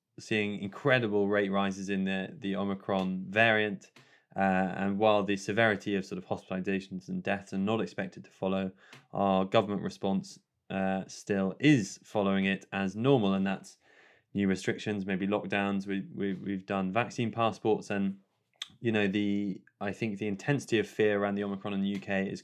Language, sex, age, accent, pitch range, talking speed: English, male, 20-39, British, 95-110 Hz, 175 wpm